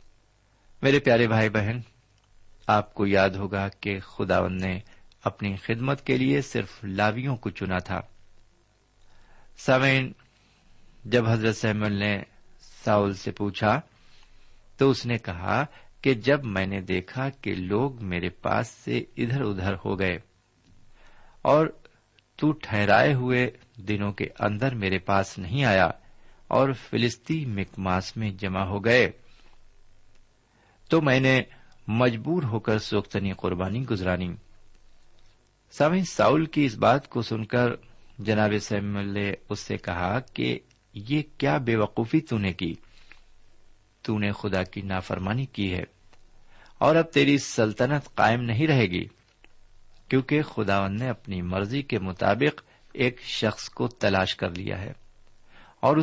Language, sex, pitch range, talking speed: Urdu, male, 100-125 Hz, 135 wpm